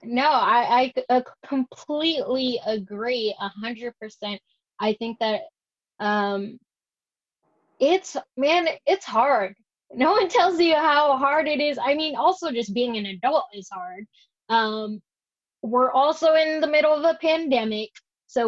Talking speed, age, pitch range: 145 wpm, 20-39, 215-285 Hz